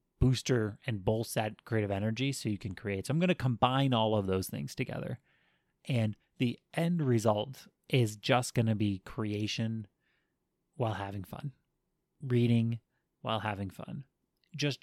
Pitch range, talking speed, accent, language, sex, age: 110-140 Hz, 155 wpm, American, English, male, 30-49